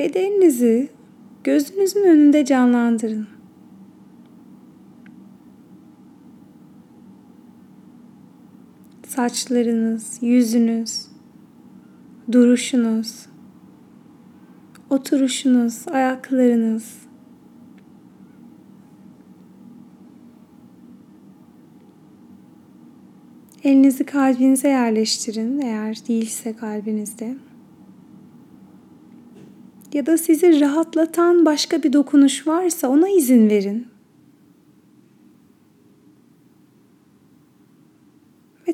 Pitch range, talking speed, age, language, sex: 235-290 Hz, 40 wpm, 30-49, Turkish, female